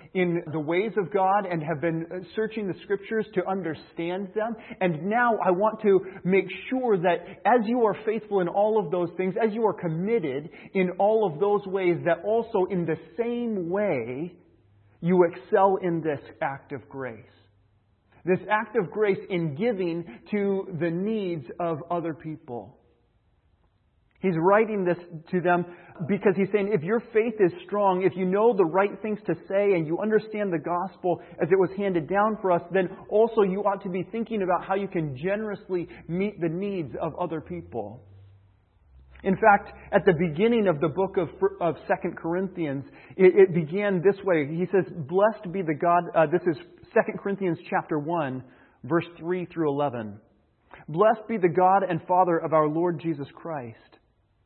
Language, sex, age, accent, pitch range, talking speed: English, male, 40-59, American, 165-200 Hz, 175 wpm